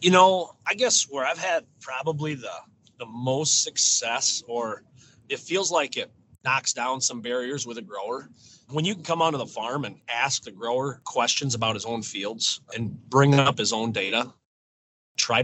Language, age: English, 30-49